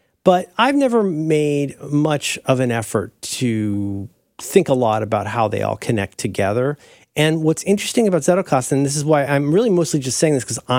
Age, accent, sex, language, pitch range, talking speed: 40-59, American, male, English, 115-165 Hz, 190 wpm